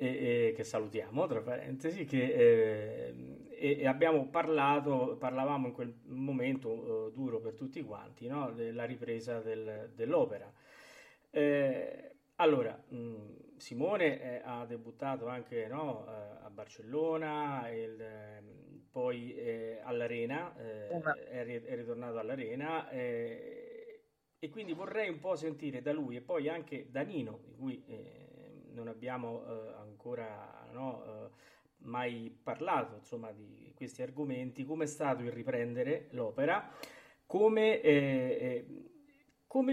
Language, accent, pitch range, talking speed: Italian, native, 120-160 Hz, 135 wpm